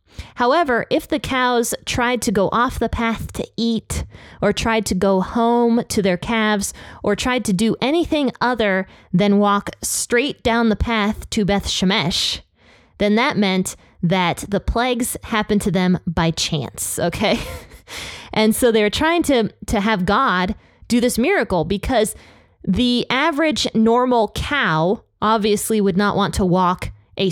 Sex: female